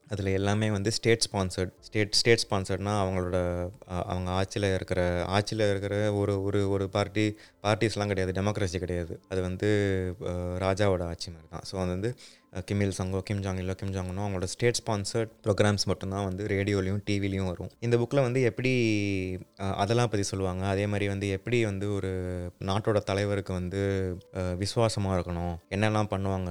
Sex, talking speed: male, 145 wpm